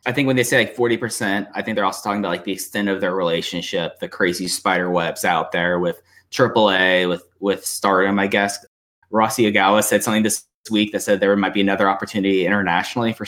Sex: male